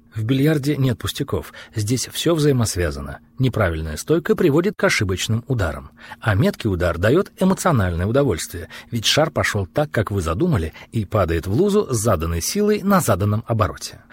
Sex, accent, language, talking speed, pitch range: male, native, Russian, 155 wpm, 100-150 Hz